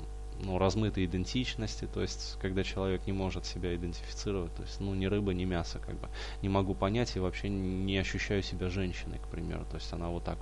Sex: male